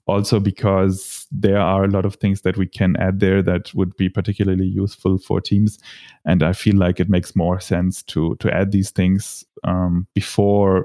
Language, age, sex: English, 30-49, male